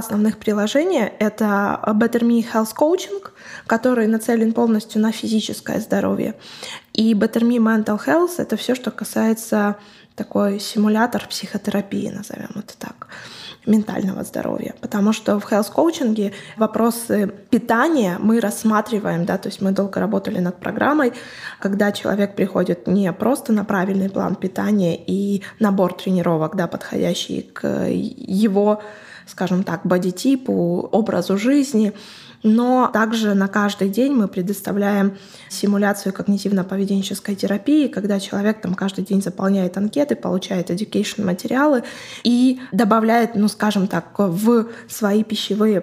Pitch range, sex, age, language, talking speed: 195-225 Hz, female, 20-39, Russian, 125 wpm